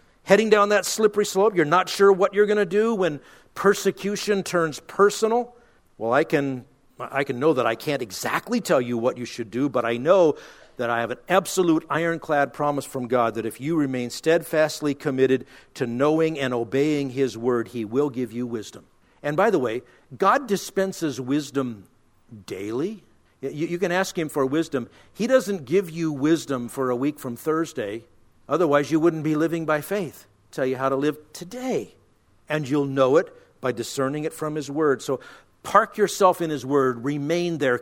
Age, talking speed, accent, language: 50-69, 190 wpm, American, English